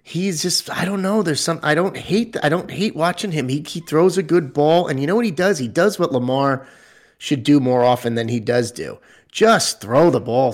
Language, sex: English, male